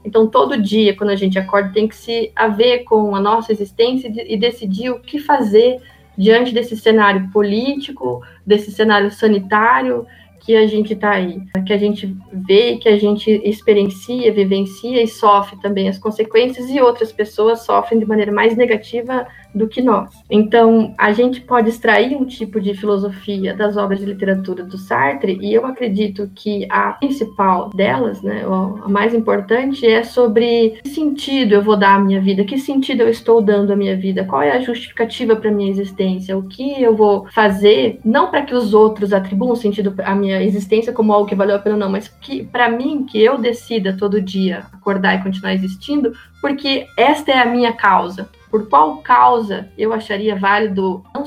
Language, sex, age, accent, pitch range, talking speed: Portuguese, female, 20-39, Brazilian, 195-230 Hz, 185 wpm